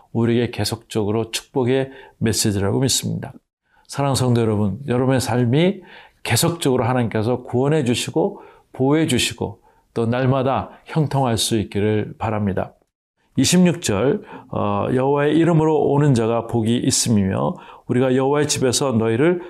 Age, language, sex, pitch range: 40-59, Korean, male, 115-145 Hz